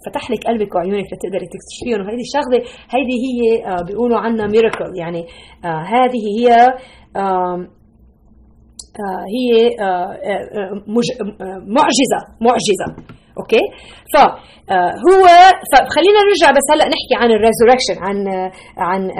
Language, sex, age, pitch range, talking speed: Arabic, female, 30-49, 200-270 Hz, 95 wpm